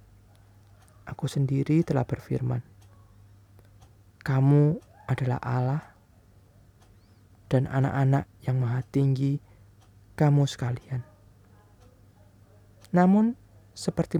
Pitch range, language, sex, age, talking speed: 100-135 Hz, Indonesian, male, 20-39, 70 wpm